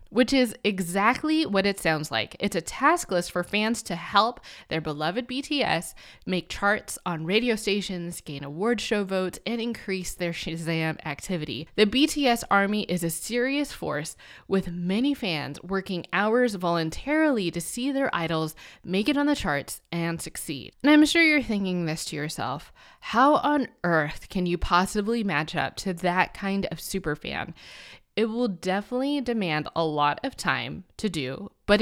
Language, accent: English, American